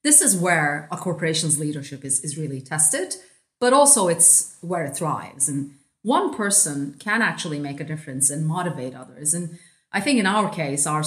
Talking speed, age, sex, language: 185 wpm, 30-49, female, English